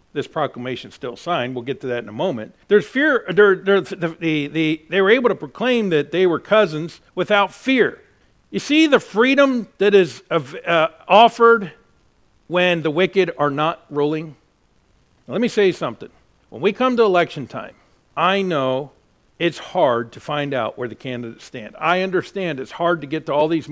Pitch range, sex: 145-205 Hz, male